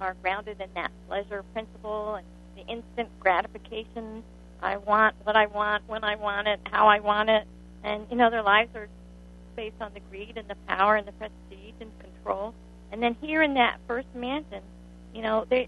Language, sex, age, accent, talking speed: English, female, 50-69, American, 195 wpm